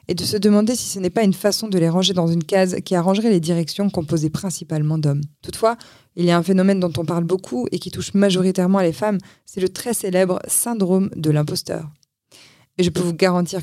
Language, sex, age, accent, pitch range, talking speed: French, female, 20-39, French, 165-195 Hz, 225 wpm